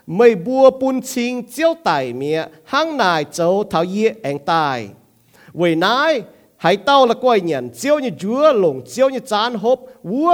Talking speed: 175 wpm